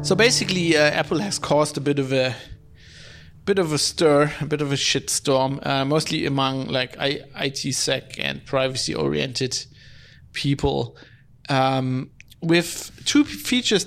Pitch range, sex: 130-150 Hz, male